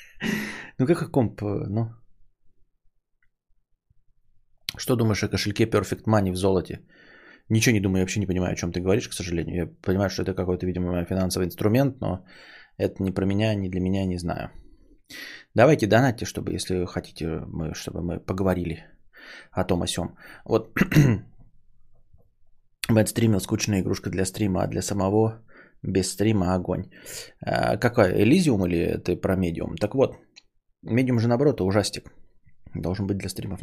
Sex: male